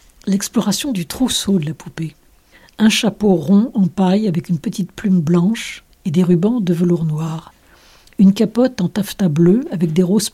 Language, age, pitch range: French, 60-79, 170-210 Hz